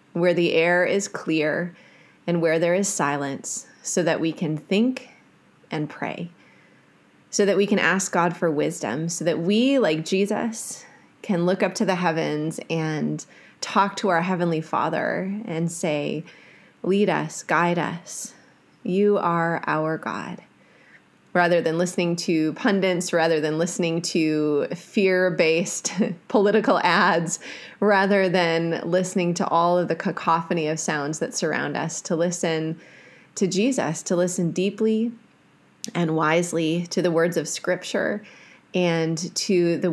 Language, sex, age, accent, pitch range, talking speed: English, female, 20-39, American, 165-195 Hz, 140 wpm